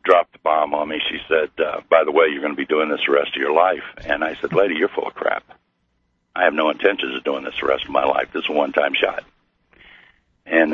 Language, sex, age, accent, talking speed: English, male, 60-79, American, 270 wpm